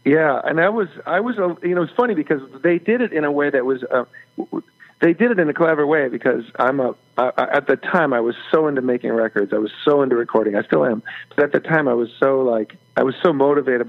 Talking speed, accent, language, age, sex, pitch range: 260 wpm, American, English, 50-69, male, 125-165 Hz